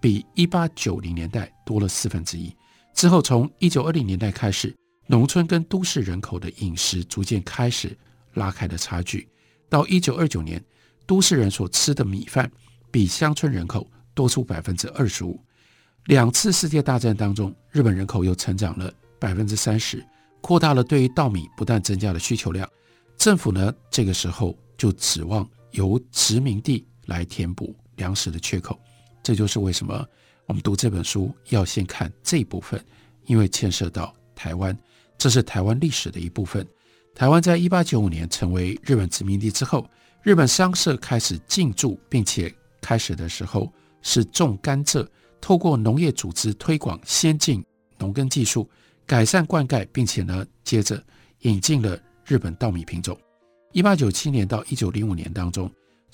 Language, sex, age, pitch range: Chinese, male, 60-79, 95-135 Hz